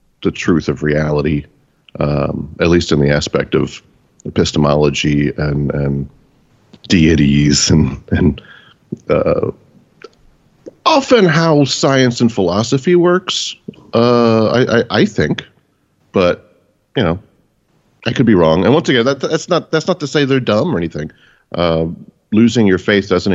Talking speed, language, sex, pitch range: 140 wpm, English, male, 75-100 Hz